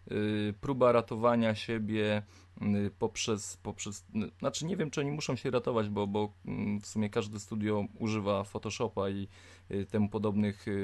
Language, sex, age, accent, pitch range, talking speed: Polish, male, 20-39, native, 100-125 Hz, 135 wpm